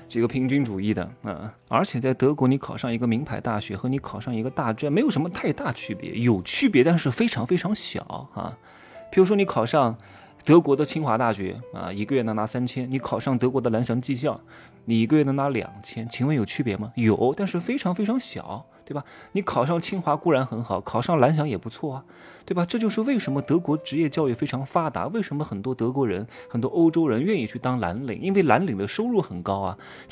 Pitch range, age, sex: 110-155 Hz, 20-39, male